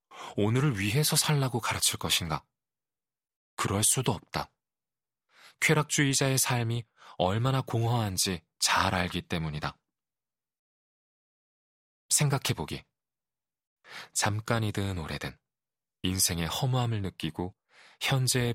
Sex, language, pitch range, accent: male, Korean, 90-125 Hz, native